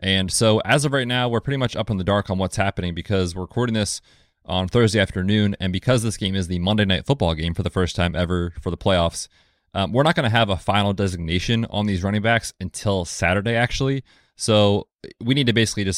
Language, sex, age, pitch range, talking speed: English, male, 30-49, 95-115 Hz, 235 wpm